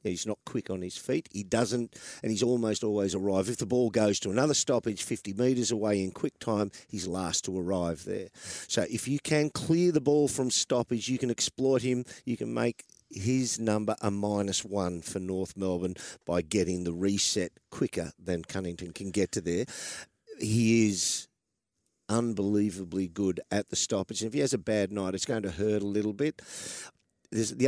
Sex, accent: male, Australian